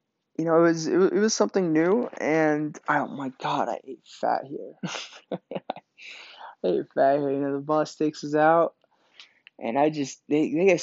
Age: 20-39